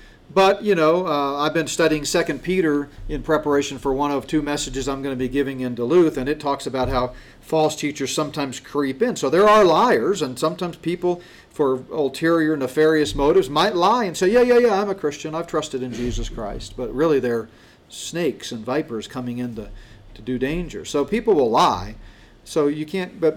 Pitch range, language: 130-170 Hz, English